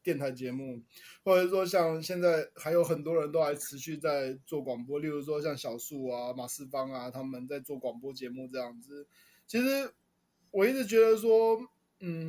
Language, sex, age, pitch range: Chinese, male, 20-39, 130-175 Hz